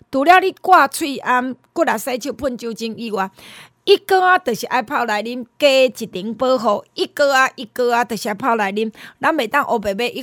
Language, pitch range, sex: Chinese, 225-305 Hz, female